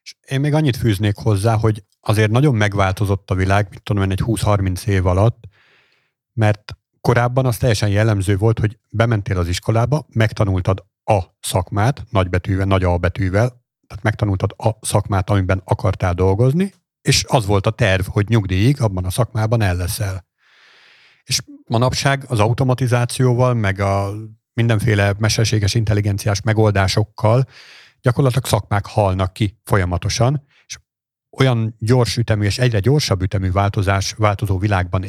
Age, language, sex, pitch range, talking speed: 50-69, Hungarian, male, 100-125 Hz, 135 wpm